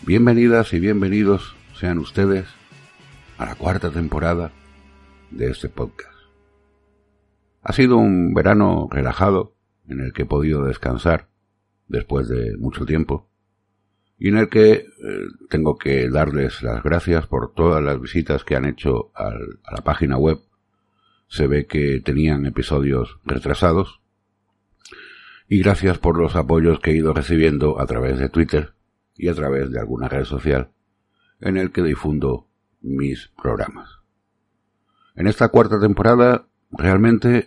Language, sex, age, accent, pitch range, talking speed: Spanish, male, 60-79, Spanish, 70-100 Hz, 135 wpm